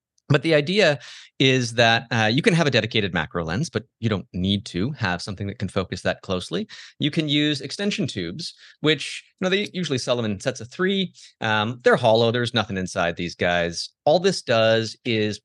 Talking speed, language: 205 wpm, English